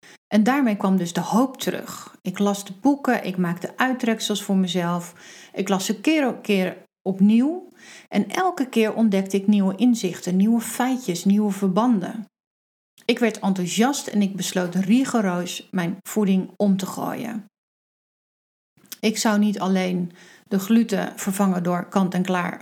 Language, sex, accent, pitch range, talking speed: Dutch, female, Dutch, 185-230 Hz, 145 wpm